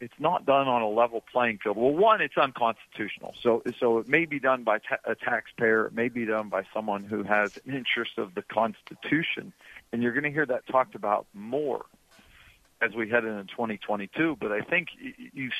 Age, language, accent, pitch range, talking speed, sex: 50-69, English, American, 120-170 Hz, 205 wpm, male